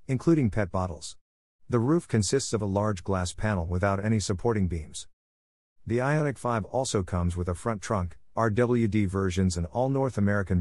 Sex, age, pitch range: male, 50-69, 90-115 Hz